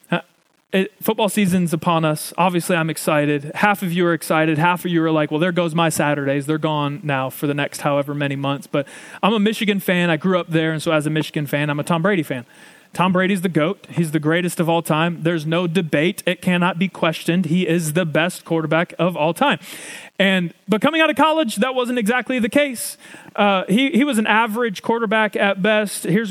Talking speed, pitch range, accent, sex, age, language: 220 wpm, 160-205 Hz, American, male, 30-49, English